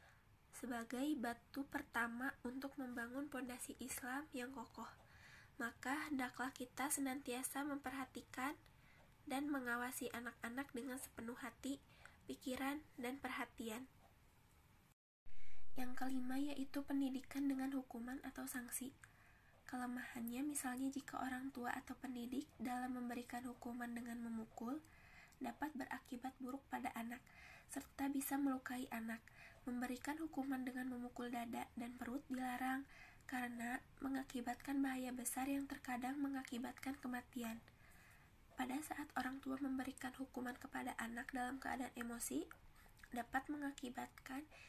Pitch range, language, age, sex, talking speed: 245-270 Hz, Indonesian, 20-39, female, 110 wpm